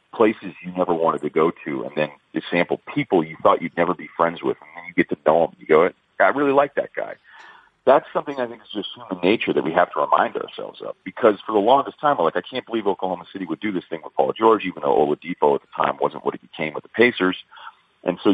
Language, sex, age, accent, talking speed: English, male, 40-59, American, 270 wpm